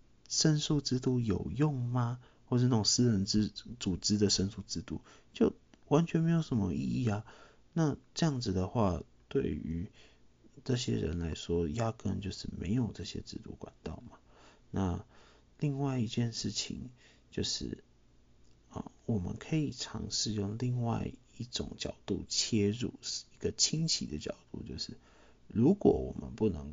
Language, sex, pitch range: Chinese, male, 95-125 Hz